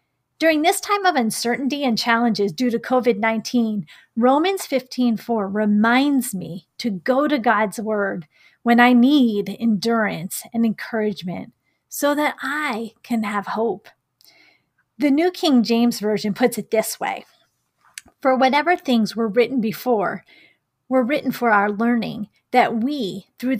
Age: 40-59